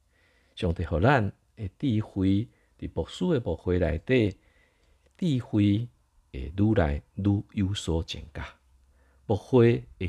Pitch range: 80-110 Hz